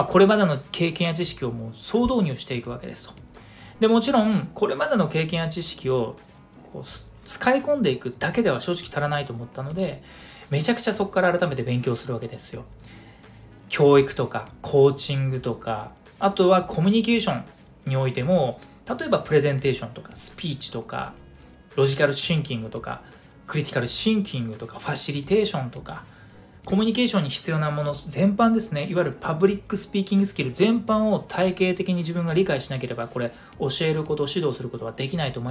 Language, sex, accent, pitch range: Japanese, male, native, 130-195 Hz